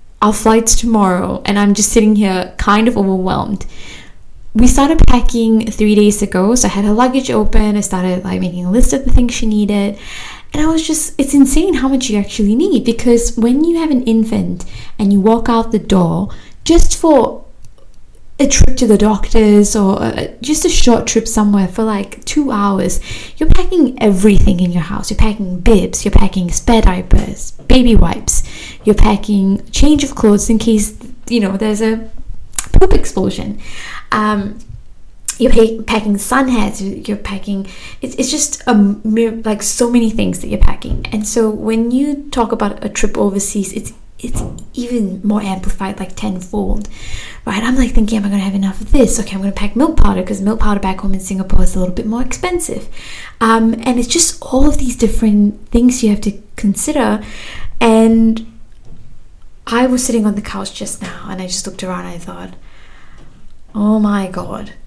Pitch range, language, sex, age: 200-240 Hz, English, female, 10-29